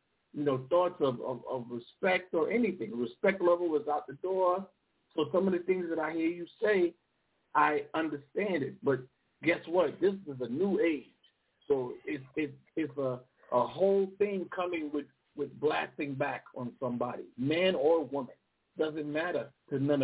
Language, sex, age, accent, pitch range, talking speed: English, male, 50-69, American, 145-190 Hz, 175 wpm